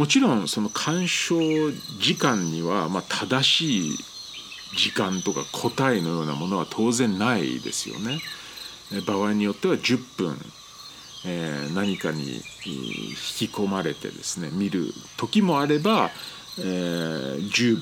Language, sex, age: Japanese, male, 50-69